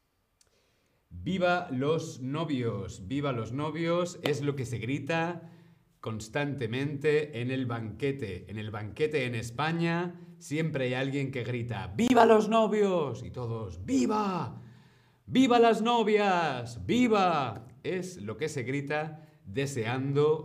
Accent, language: Spanish, Spanish